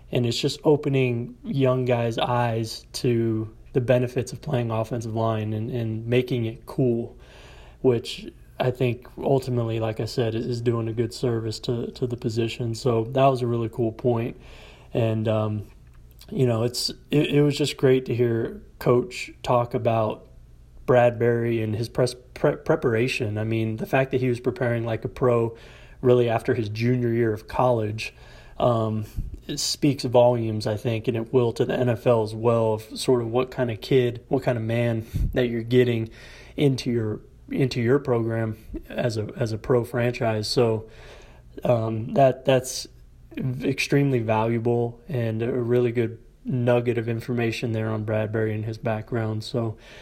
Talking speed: 170 wpm